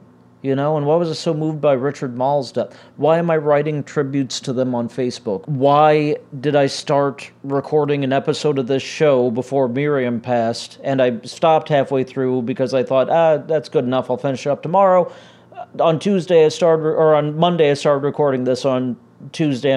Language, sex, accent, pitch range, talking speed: English, male, American, 125-160 Hz, 195 wpm